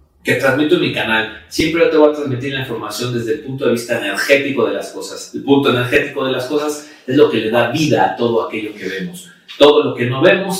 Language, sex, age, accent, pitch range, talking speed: Spanish, male, 40-59, Mexican, 130-180 Hz, 245 wpm